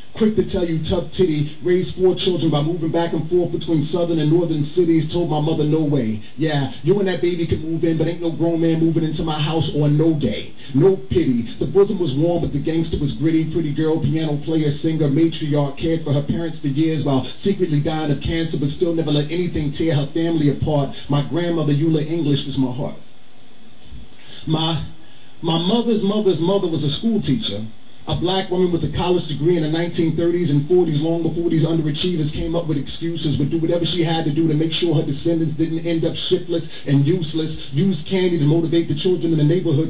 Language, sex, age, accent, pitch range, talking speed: English, male, 40-59, American, 145-170 Hz, 215 wpm